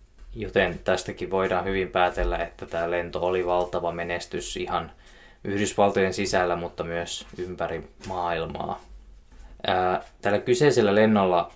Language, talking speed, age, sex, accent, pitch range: Finnish, 115 wpm, 20-39, male, native, 85-100 Hz